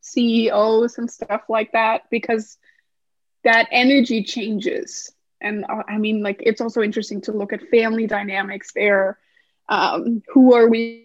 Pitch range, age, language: 210-245 Hz, 20-39, English